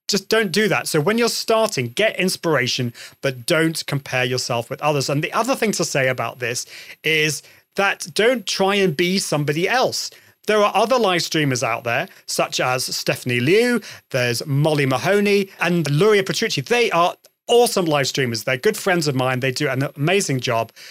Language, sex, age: English, male, 30-49